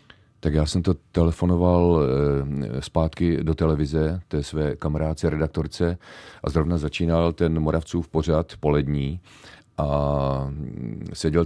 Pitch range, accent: 70-85 Hz, native